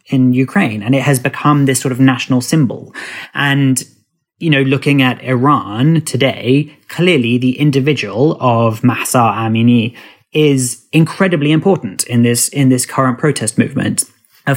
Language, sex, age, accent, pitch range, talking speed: English, male, 30-49, British, 120-145 Hz, 145 wpm